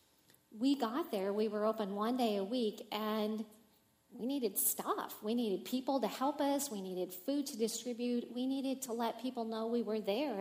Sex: female